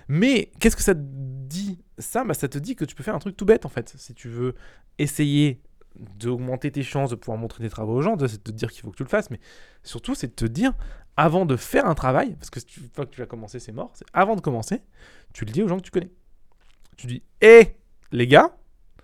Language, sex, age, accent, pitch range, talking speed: French, male, 20-39, French, 125-190 Hz, 270 wpm